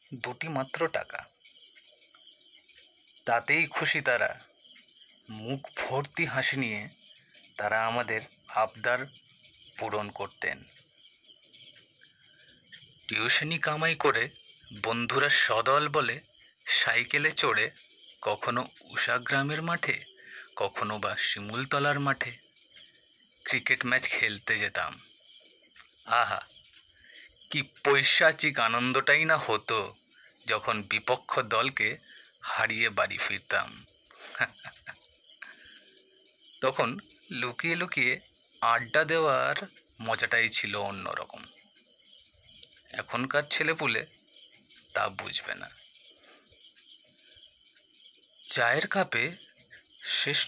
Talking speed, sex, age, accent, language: 70 wpm, male, 30-49, native, Bengali